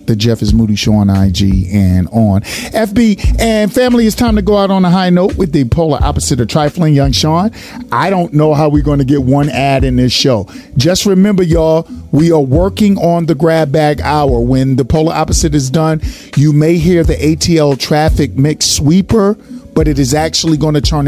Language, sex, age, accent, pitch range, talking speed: English, male, 40-59, American, 115-155 Hz, 210 wpm